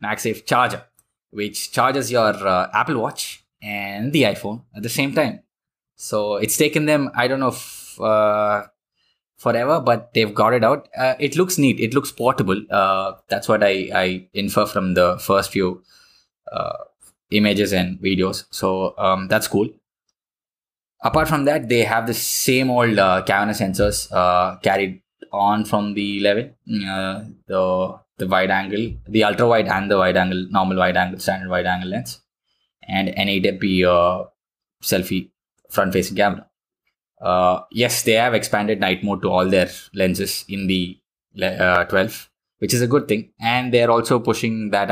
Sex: male